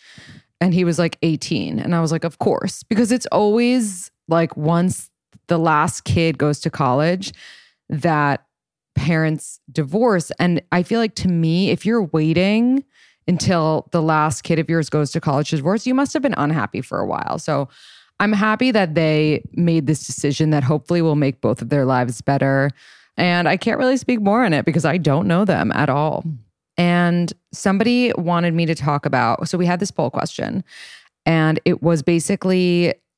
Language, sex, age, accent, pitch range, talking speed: English, female, 20-39, American, 150-180 Hz, 185 wpm